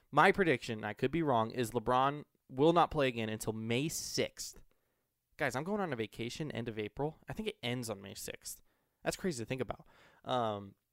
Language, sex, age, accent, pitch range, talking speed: English, male, 20-39, American, 110-145 Hz, 210 wpm